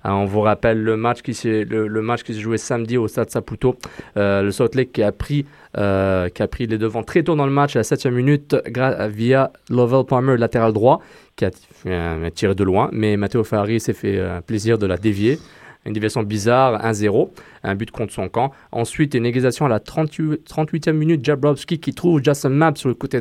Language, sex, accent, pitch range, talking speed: French, male, French, 105-135 Hz, 205 wpm